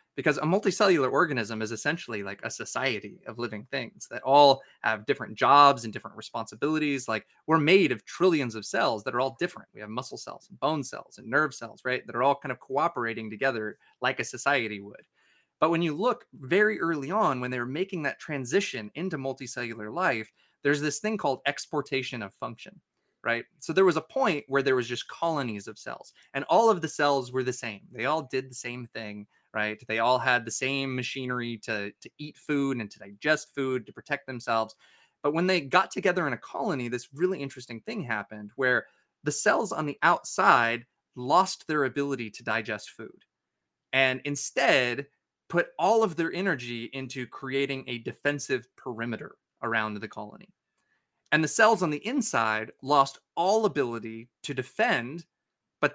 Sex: male